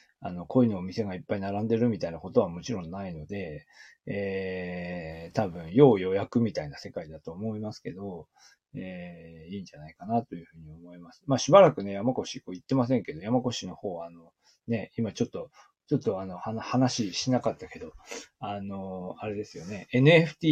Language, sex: Japanese, male